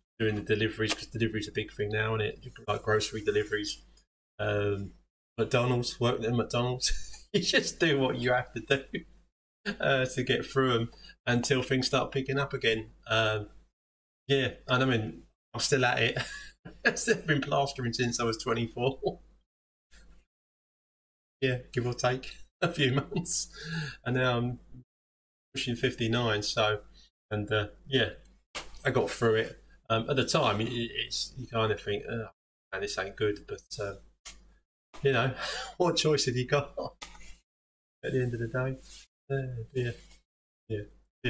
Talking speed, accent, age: 150 wpm, British, 20-39